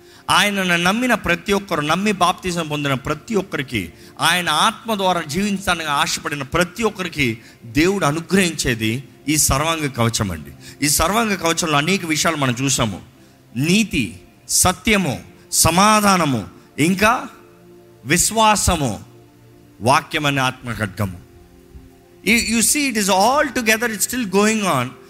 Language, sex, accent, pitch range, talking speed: Telugu, male, native, 120-185 Hz, 105 wpm